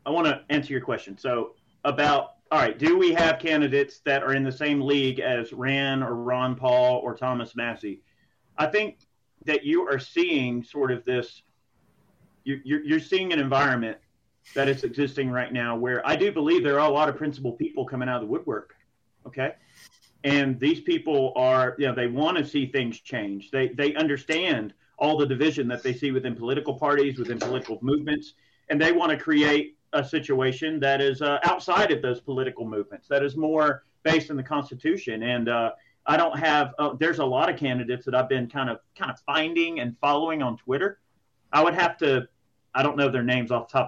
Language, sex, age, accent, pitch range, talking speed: English, male, 40-59, American, 125-155 Hz, 205 wpm